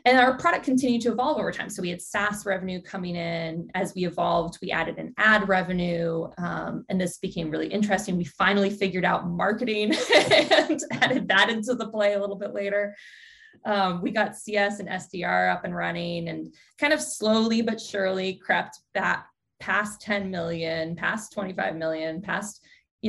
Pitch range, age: 170-210 Hz, 20-39